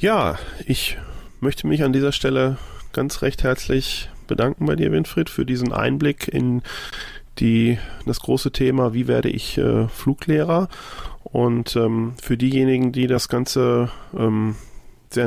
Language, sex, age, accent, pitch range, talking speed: German, male, 20-39, German, 105-130 Hz, 140 wpm